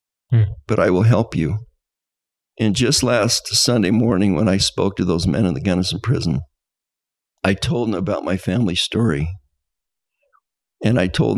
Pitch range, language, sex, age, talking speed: 95-130 Hz, English, male, 50-69, 160 wpm